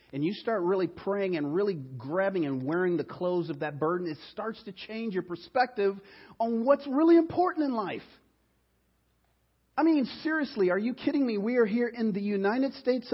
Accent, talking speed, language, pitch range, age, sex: American, 185 wpm, English, 175-245 Hz, 40-59, male